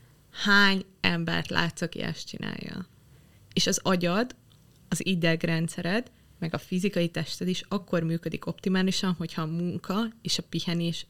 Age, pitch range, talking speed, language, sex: 20-39, 165-190 Hz, 135 wpm, Hungarian, female